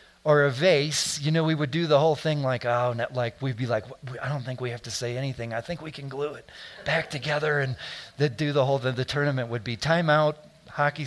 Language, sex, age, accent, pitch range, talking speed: English, male, 40-59, American, 125-160 Hz, 250 wpm